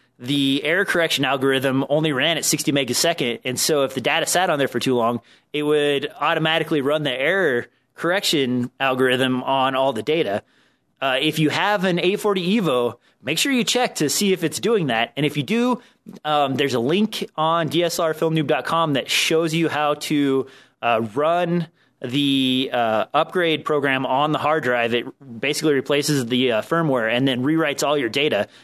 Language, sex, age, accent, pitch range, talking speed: English, male, 30-49, American, 130-160 Hz, 180 wpm